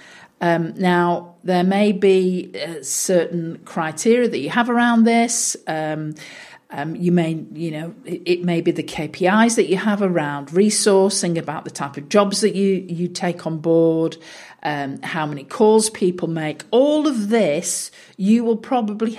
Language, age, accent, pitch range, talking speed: English, 50-69, British, 165-210 Hz, 165 wpm